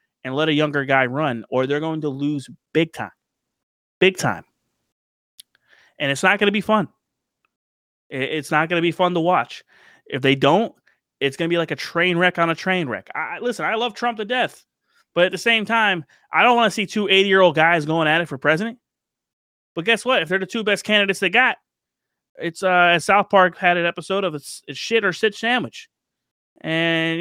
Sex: male